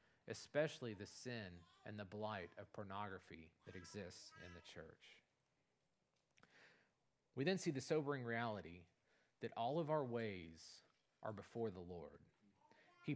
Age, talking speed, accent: 40-59, 130 wpm, American